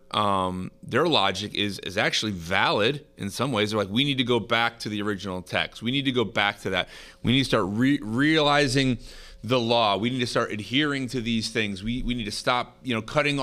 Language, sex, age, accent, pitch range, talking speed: English, male, 30-49, American, 100-125 Hz, 230 wpm